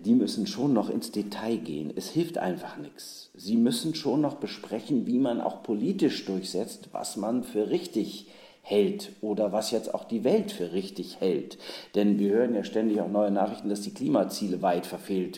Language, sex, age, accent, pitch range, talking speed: German, male, 50-69, German, 100-130 Hz, 185 wpm